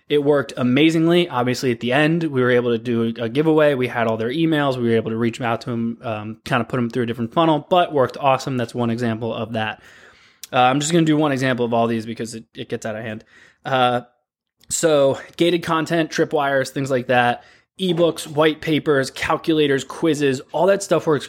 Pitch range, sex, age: 120-150 Hz, male, 20-39